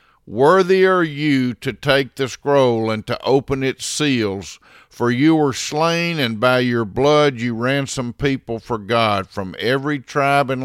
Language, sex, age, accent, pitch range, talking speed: English, male, 50-69, American, 110-140 Hz, 165 wpm